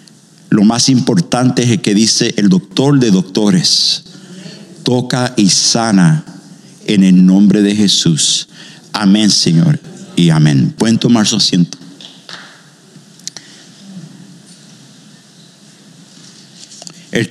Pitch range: 135-180 Hz